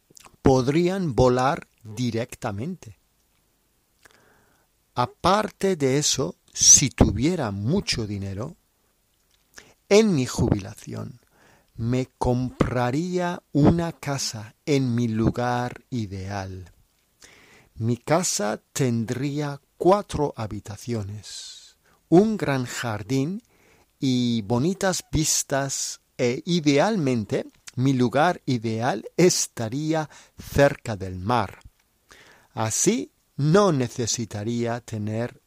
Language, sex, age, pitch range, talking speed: Spanish, male, 50-69, 115-155 Hz, 75 wpm